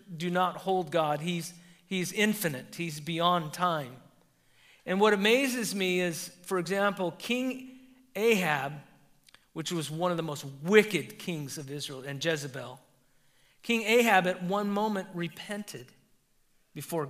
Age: 50-69